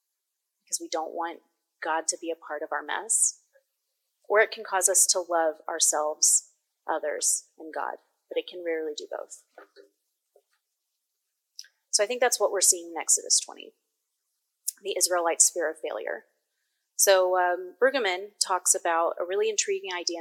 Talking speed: 155 wpm